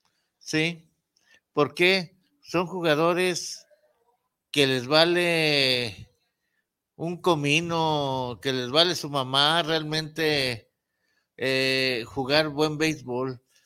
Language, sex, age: Spanish, male, 50-69